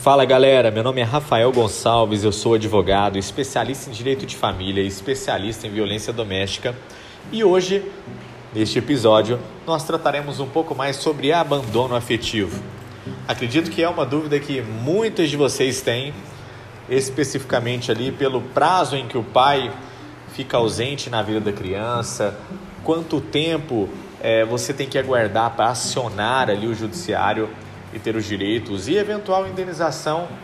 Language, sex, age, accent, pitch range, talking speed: Portuguese, male, 40-59, Brazilian, 110-150 Hz, 145 wpm